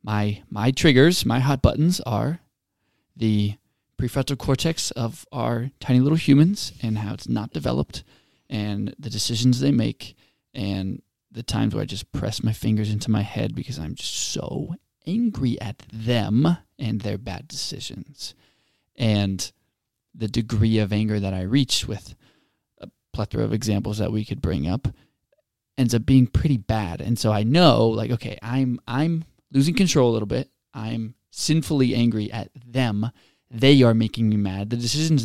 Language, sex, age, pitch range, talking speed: English, male, 20-39, 105-130 Hz, 165 wpm